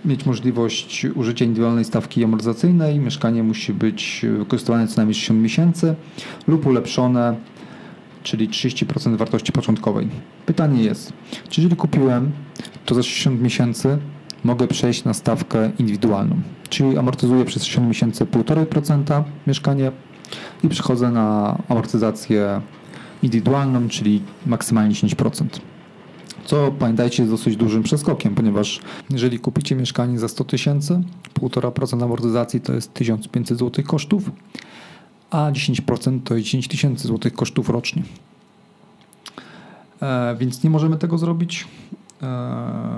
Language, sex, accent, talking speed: Polish, male, native, 120 wpm